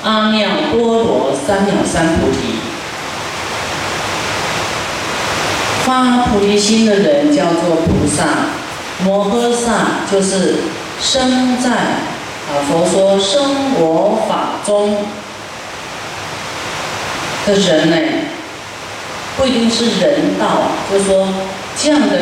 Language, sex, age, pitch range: Chinese, female, 50-69, 165-230 Hz